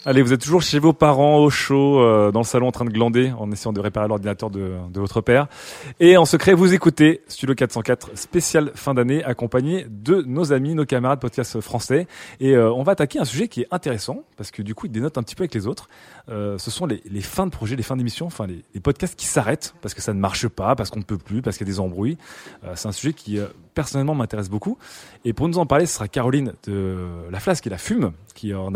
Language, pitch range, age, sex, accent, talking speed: French, 105-145 Hz, 20-39, male, French, 260 wpm